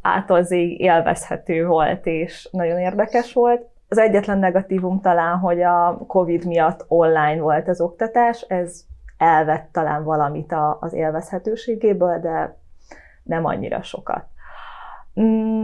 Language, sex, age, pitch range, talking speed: Hungarian, female, 20-39, 160-205 Hz, 110 wpm